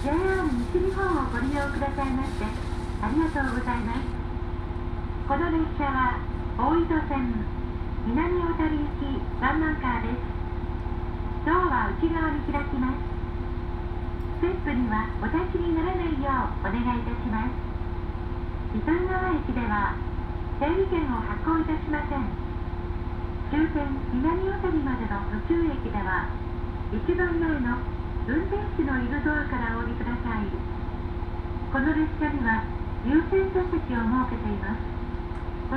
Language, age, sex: Japanese, 40-59, female